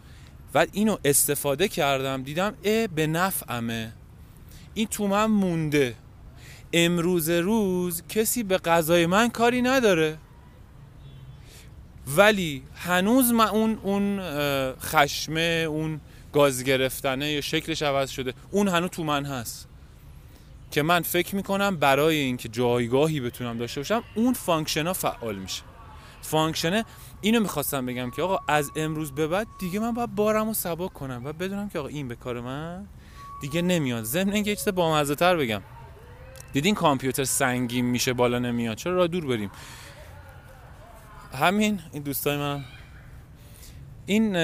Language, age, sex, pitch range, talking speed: Persian, 20-39, male, 125-180 Hz, 140 wpm